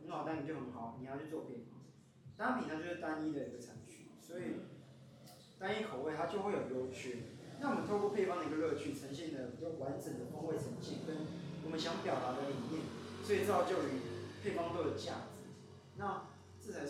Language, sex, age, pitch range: Chinese, male, 20-39, 125-180 Hz